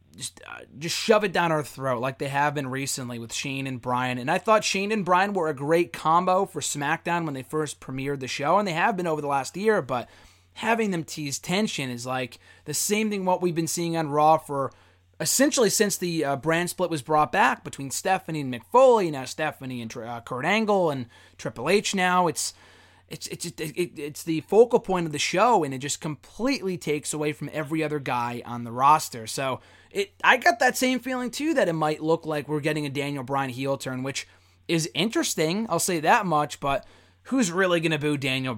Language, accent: English, American